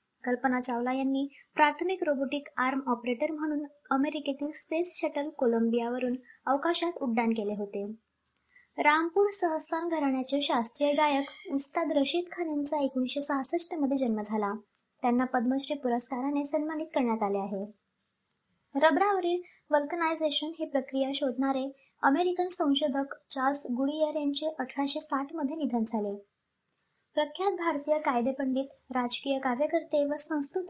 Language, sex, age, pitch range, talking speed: Marathi, male, 20-39, 245-305 Hz, 75 wpm